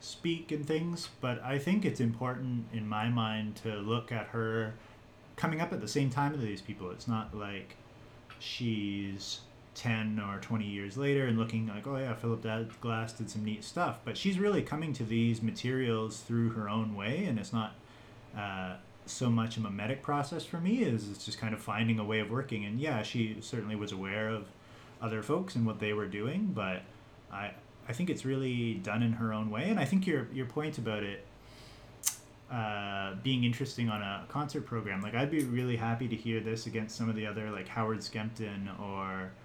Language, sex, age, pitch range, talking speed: English, male, 30-49, 110-125 Hz, 205 wpm